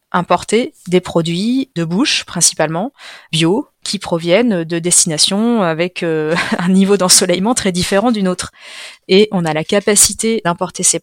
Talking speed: 145 wpm